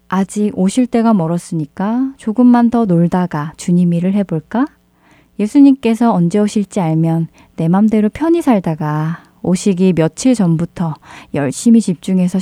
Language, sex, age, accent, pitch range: Korean, female, 20-39, native, 165-210 Hz